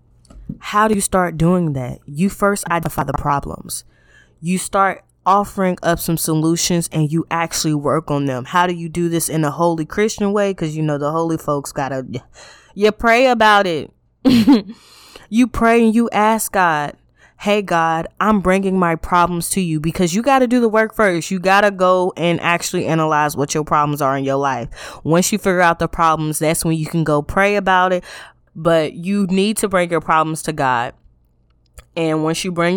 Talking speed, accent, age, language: 200 wpm, American, 20-39, English